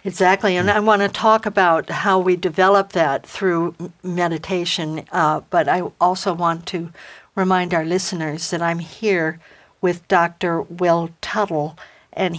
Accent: American